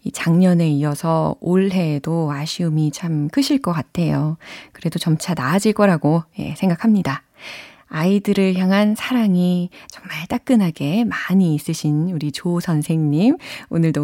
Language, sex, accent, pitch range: Korean, female, native, 160-260 Hz